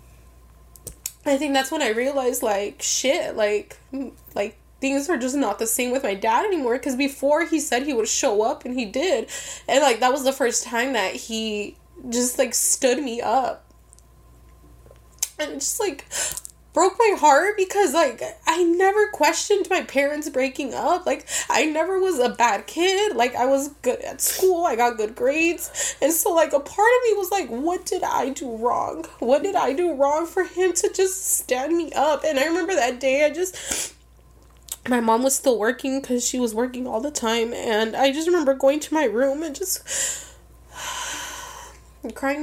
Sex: female